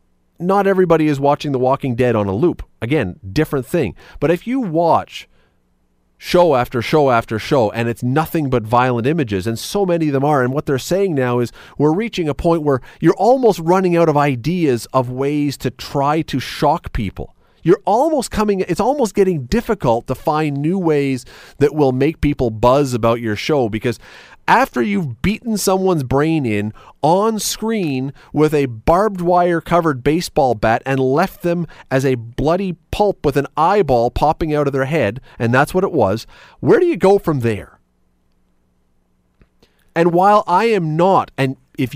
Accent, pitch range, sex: American, 120-175 Hz, male